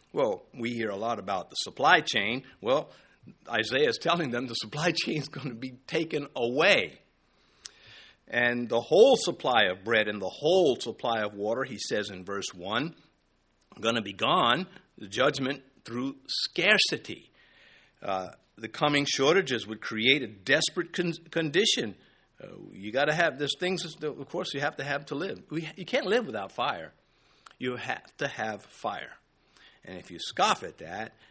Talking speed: 170 wpm